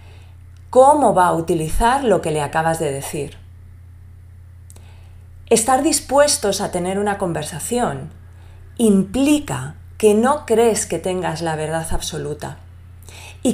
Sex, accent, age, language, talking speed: female, Spanish, 30-49, Spanish, 115 wpm